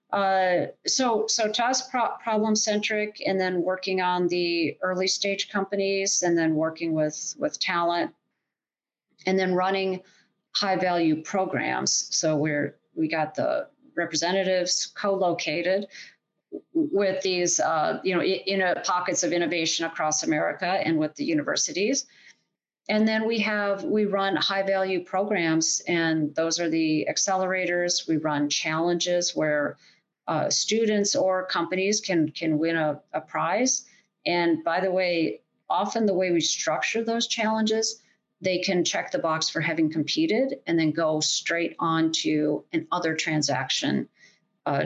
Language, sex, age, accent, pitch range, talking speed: English, female, 40-59, American, 165-215 Hz, 145 wpm